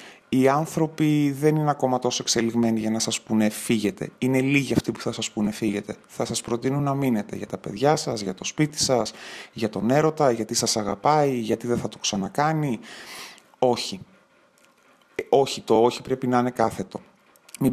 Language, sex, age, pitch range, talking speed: Greek, male, 30-49, 115-150 Hz, 180 wpm